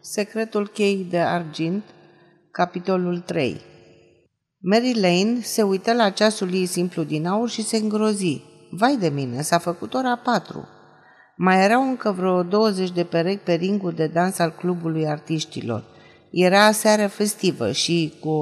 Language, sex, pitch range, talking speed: Romanian, female, 160-210 Hz, 145 wpm